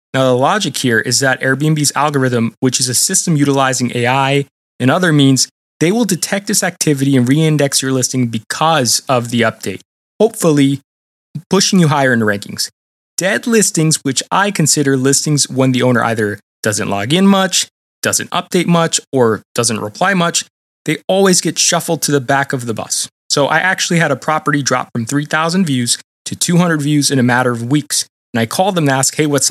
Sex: male